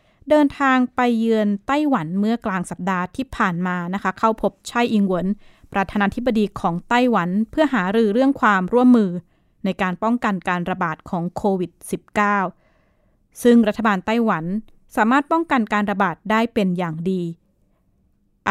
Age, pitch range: 20-39, 185-225 Hz